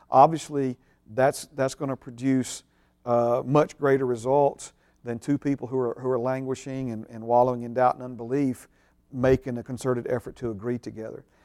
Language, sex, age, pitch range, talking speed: English, male, 40-59, 125-145 Hz, 170 wpm